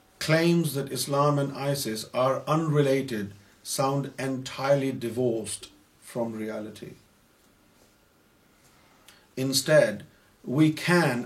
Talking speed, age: 80 wpm, 50-69